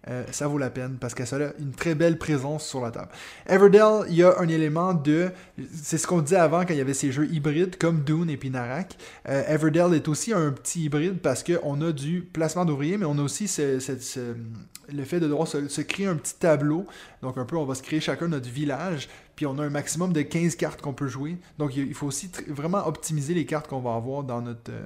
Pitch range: 140-170 Hz